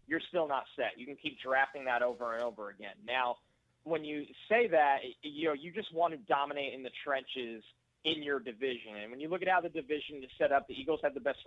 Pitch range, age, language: 130-160 Hz, 30-49, English